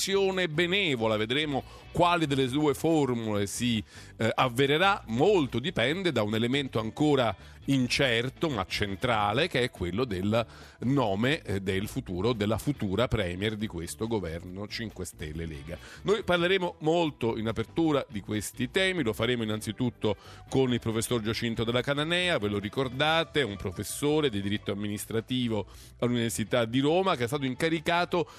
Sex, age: male, 40-59